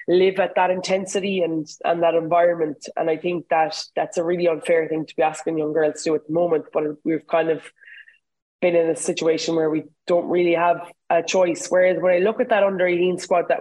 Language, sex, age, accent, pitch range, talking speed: English, female, 20-39, Irish, 165-185 Hz, 230 wpm